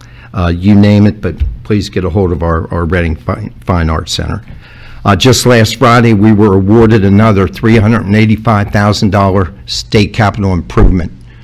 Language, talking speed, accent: English, 145 wpm, American